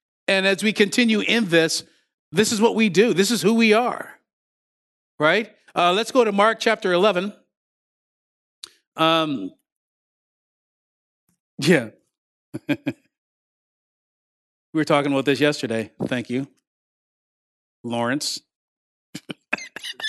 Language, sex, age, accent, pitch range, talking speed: English, male, 50-69, American, 155-215 Hz, 105 wpm